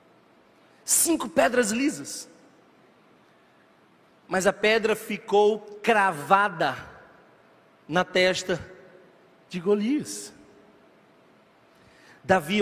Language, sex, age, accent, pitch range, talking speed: Portuguese, male, 40-59, Brazilian, 180-240 Hz, 60 wpm